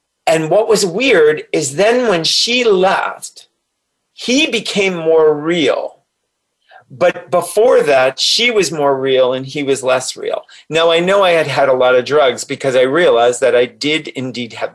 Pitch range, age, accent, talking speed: 135-220 Hz, 40-59, American, 175 wpm